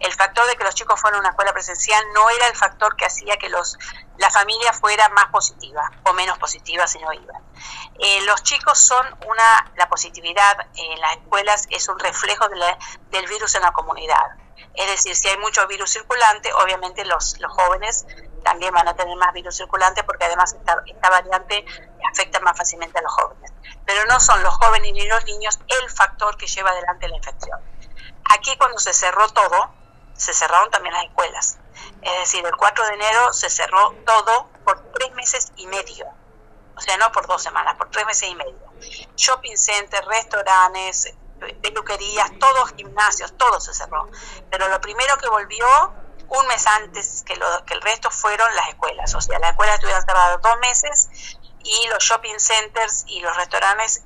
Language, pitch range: Spanish, 185-225 Hz